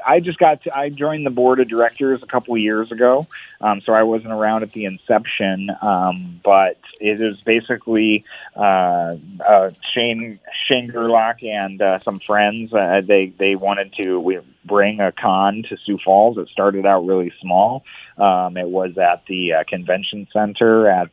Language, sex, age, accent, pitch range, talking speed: English, male, 30-49, American, 95-115 Hz, 180 wpm